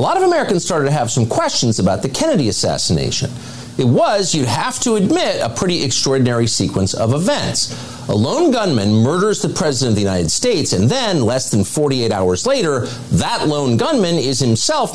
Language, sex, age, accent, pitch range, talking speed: English, male, 50-69, American, 115-180 Hz, 190 wpm